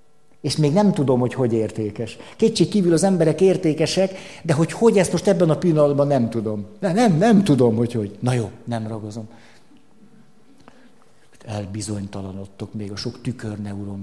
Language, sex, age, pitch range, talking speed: Hungarian, male, 60-79, 120-175 Hz, 160 wpm